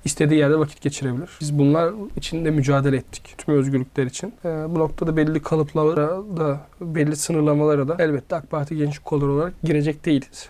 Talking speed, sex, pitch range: 170 wpm, male, 150-180 Hz